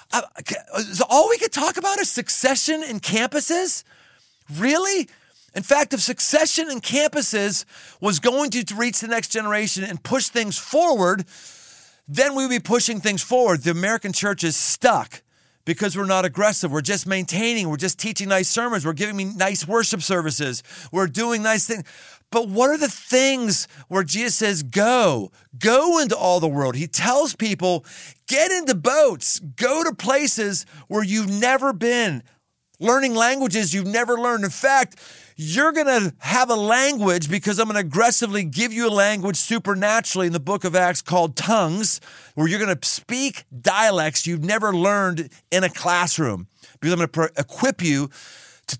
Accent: American